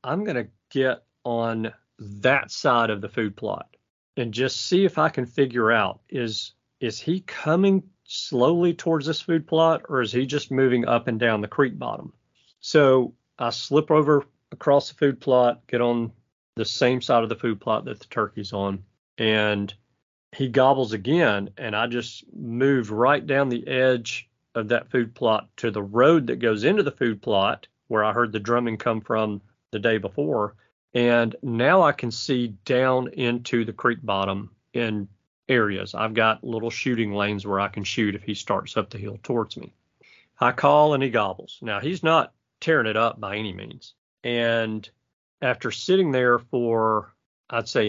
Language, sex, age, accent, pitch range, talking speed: English, male, 40-59, American, 110-130 Hz, 180 wpm